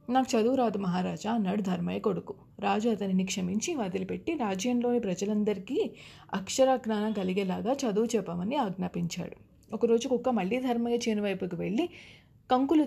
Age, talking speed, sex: 30-49, 120 wpm, female